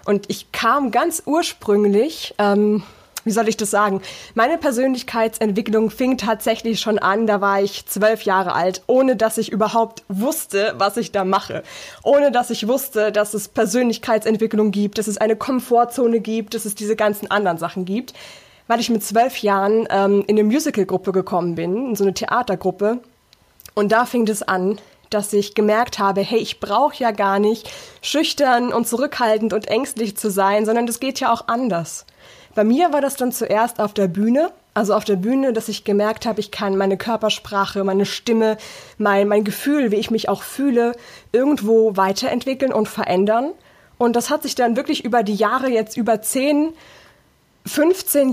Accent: German